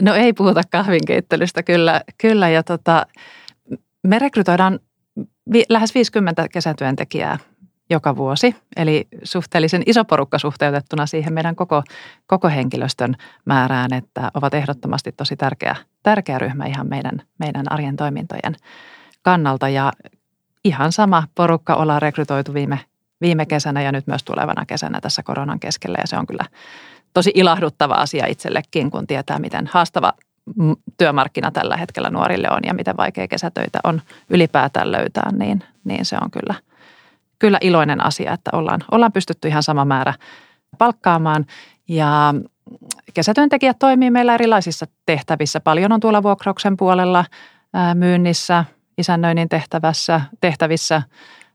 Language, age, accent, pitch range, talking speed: Finnish, 40-59, native, 150-190 Hz, 130 wpm